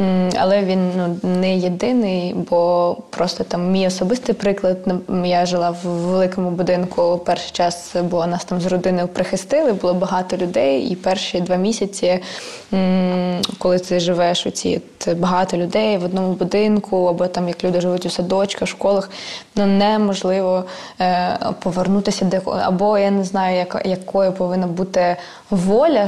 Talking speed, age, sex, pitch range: 150 wpm, 20-39, female, 180-195 Hz